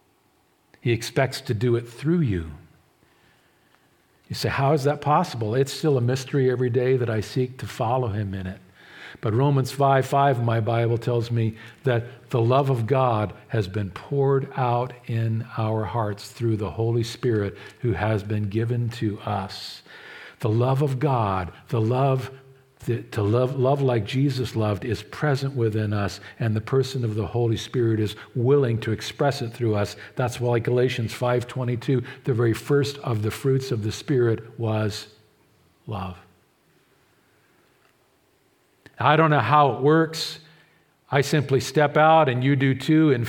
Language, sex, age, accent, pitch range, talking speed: English, male, 50-69, American, 110-135 Hz, 165 wpm